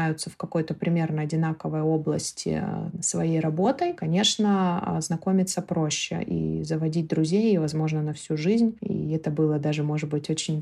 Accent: native